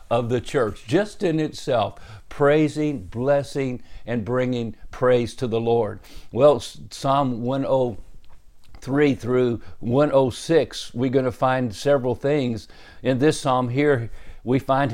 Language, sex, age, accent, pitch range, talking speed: English, male, 50-69, American, 110-140 Hz, 125 wpm